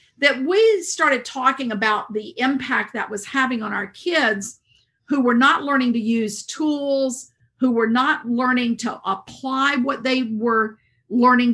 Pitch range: 215-260 Hz